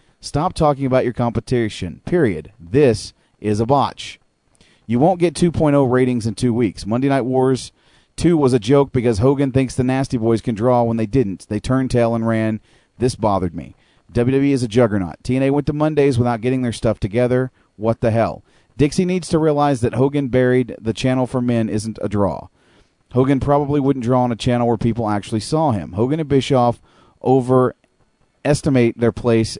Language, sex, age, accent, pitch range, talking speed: English, male, 40-59, American, 110-135 Hz, 190 wpm